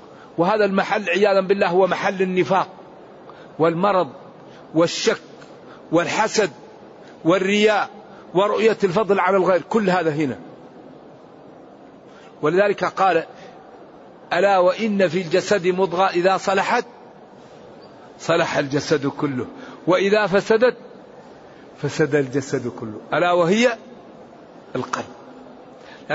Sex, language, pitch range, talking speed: male, Arabic, 175-215 Hz, 85 wpm